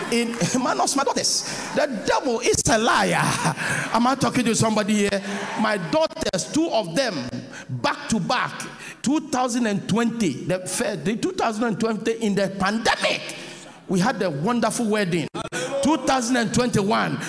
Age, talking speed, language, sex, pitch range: 50-69, 120 wpm, English, male, 215-310 Hz